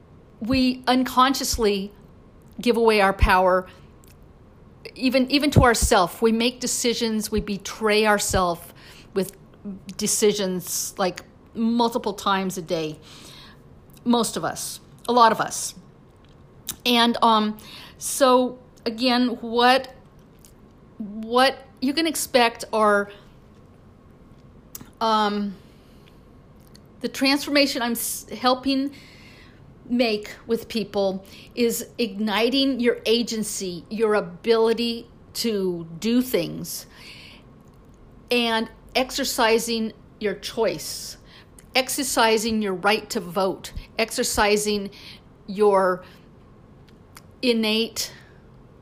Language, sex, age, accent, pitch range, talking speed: English, female, 50-69, American, 205-240 Hz, 85 wpm